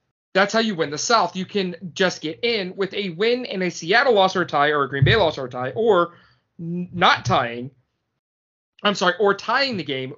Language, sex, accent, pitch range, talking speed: English, male, American, 130-200 Hz, 225 wpm